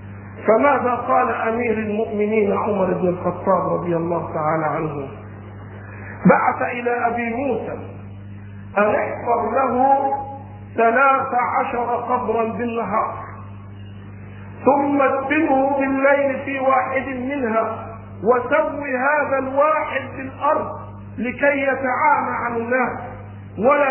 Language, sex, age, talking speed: Arabic, male, 50-69, 95 wpm